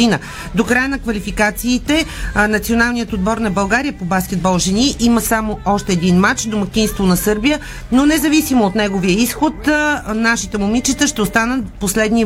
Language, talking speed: Bulgarian, 145 wpm